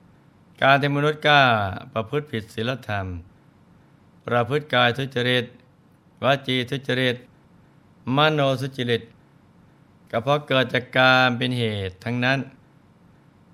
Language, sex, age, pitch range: Thai, male, 60-79, 115-135 Hz